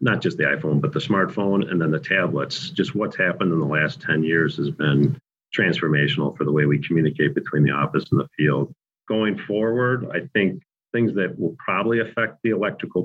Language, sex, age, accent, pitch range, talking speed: English, male, 40-59, American, 75-95 Hz, 200 wpm